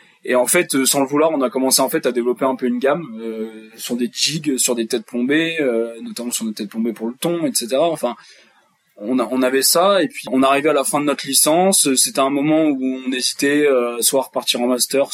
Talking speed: 255 wpm